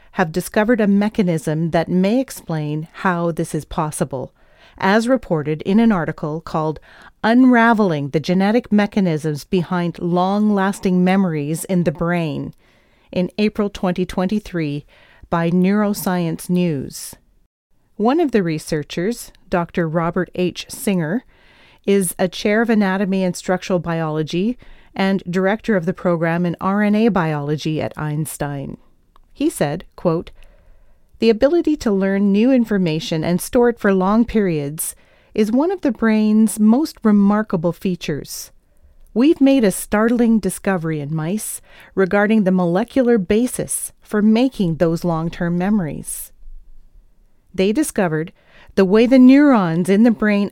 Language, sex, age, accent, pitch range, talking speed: English, female, 40-59, American, 170-220 Hz, 125 wpm